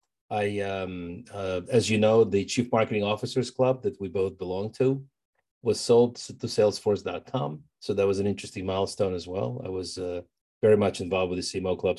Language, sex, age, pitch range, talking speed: English, male, 40-59, 100-125 Hz, 190 wpm